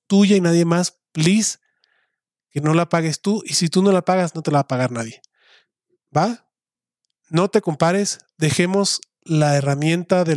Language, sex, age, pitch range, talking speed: Spanish, male, 30-49, 145-175 Hz, 180 wpm